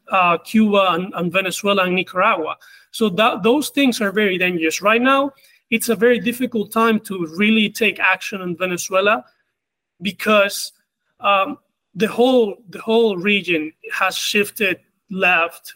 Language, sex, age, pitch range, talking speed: English, male, 30-49, 180-215 Hz, 135 wpm